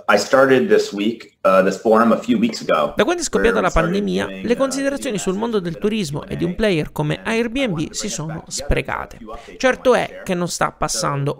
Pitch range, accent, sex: 155-225 Hz, native, male